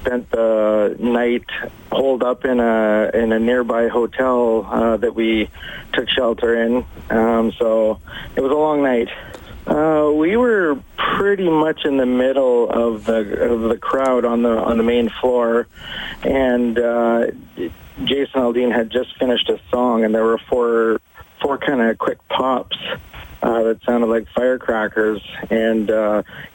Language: English